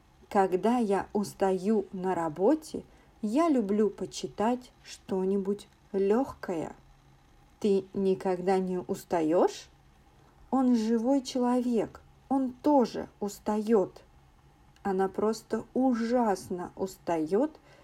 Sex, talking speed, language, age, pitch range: female, 80 wpm, English, 40-59, 190-245 Hz